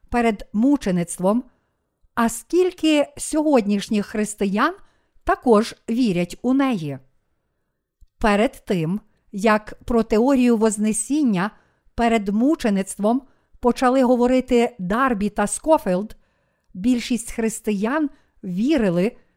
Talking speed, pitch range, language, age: 80 wpm, 205-255 Hz, Ukrainian, 50-69